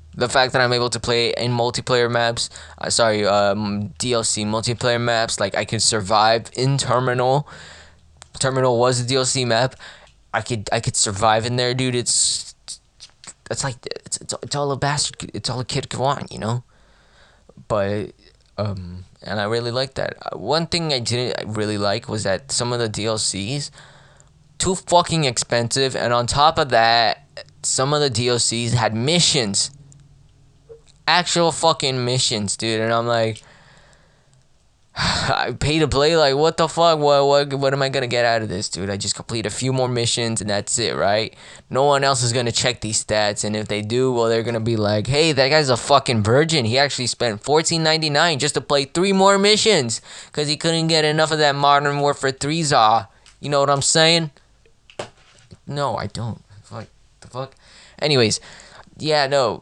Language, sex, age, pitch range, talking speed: English, male, 20-39, 110-145 Hz, 185 wpm